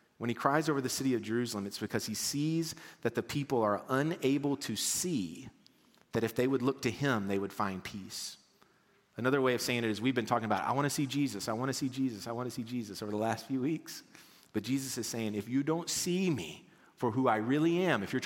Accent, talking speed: American, 250 wpm